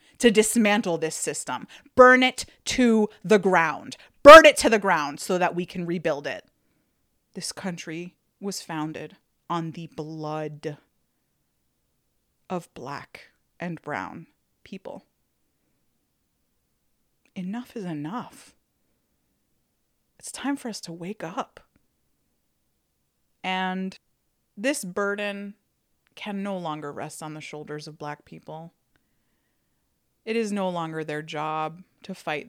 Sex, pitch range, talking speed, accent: female, 150-205 Hz, 115 wpm, American